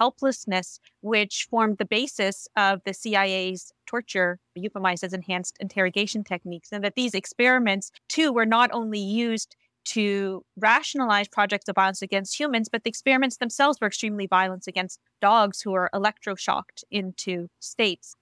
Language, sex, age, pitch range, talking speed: English, female, 30-49, 195-235 Hz, 145 wpm